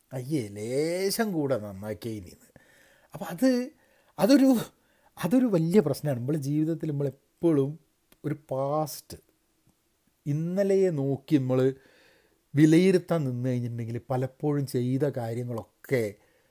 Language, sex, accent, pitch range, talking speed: Malayalam, male, native, 120-165 Hz, 90 wpm